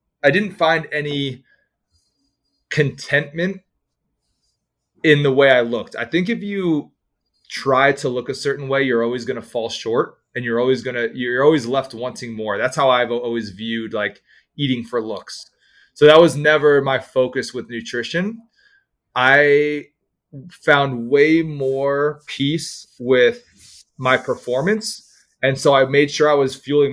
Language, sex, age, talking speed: English, male, 30-49, 155 wpm